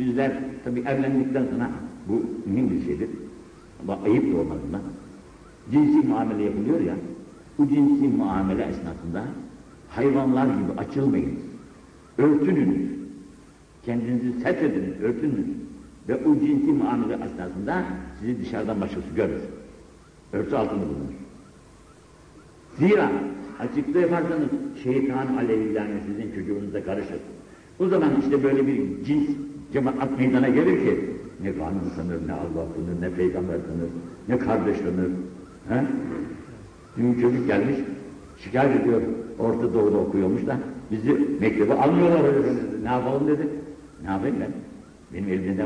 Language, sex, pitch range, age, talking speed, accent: Turkish, male, 110-150 Hz, 70-89, 120 wpm, native